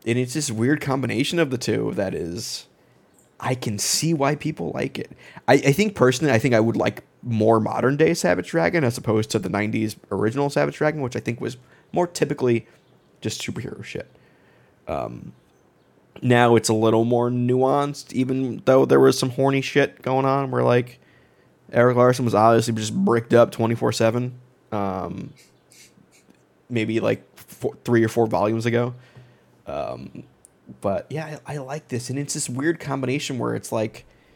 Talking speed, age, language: 170 wpm, 20-39, English